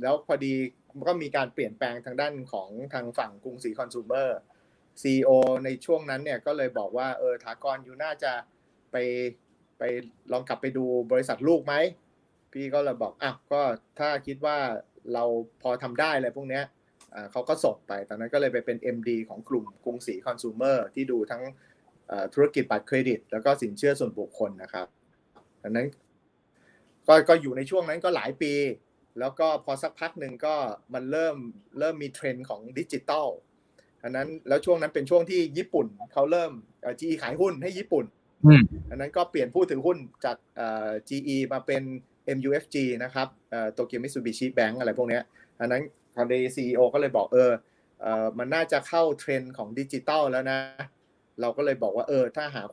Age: 30-49